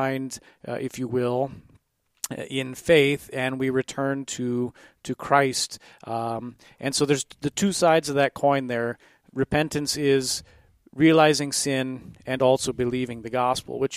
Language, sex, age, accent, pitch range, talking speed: English, male, 40-59, American, 125-145 Hz, 140 wpm